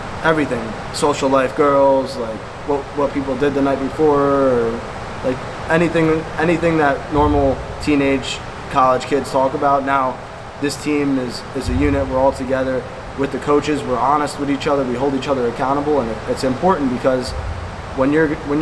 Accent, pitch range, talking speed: American, 130-145 Hz, 170 wpm